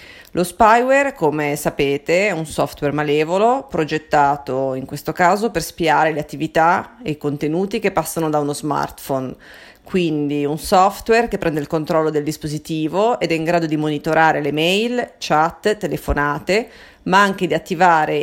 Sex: female